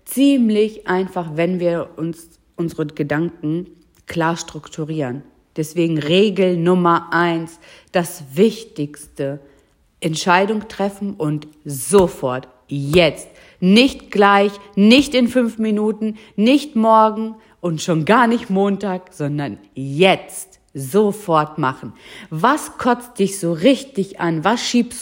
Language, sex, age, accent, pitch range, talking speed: German, female, 50-69, German, 165-225 Hz, 110 wpm